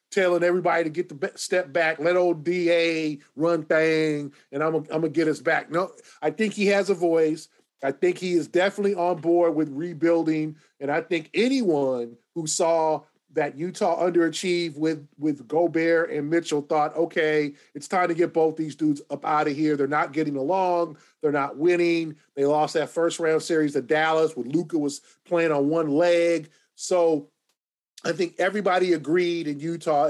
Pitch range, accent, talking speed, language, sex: 155-175 Hz, American, 185 wpm, English, male